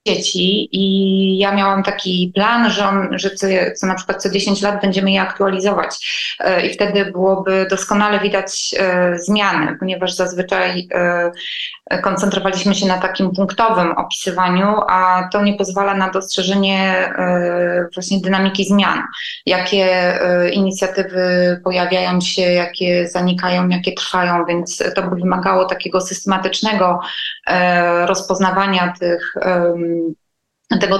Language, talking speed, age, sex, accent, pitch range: Polish, 120 wpm, 20-39, female, native, 180-195 Hz